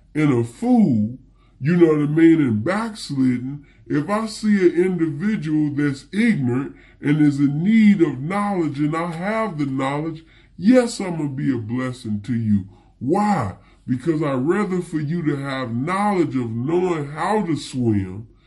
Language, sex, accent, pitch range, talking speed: English, female, American, 125-175 Hz, 165 wpm